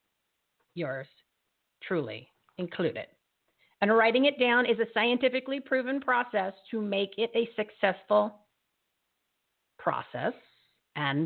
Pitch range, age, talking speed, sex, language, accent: 185-230 Hz, 40-59, 105 wpm, female, English, American